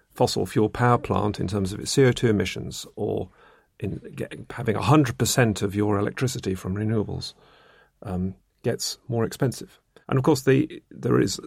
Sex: male